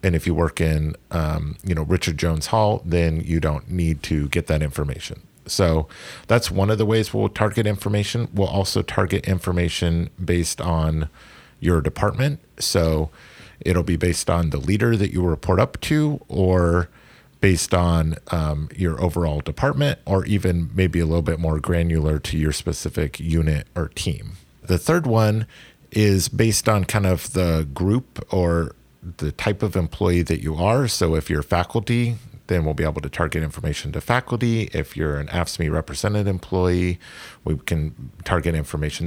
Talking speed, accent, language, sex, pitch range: 170 wpm, American, English, male, 80-100 Hz